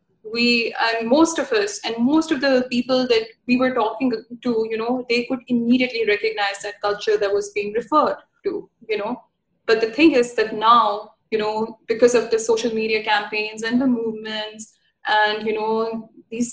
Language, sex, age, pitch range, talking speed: Urdu, female, 10-29, 220-280 Hz, 185 wpm